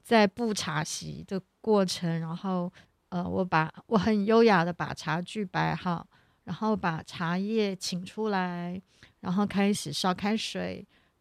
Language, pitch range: Chinese, 175-220 Hz